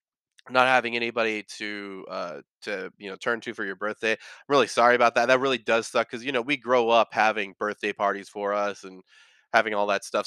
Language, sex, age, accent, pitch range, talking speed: English, male, 20-39, American, 100-120 Hz, 220 wpm